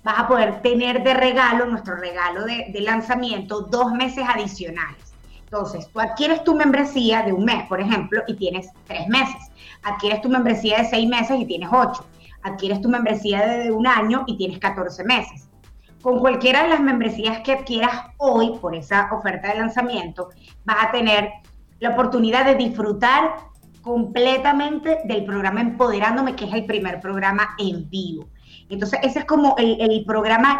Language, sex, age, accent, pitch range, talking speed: Spanish, female, 20-39, American, 200-250 Hz, 165 wpm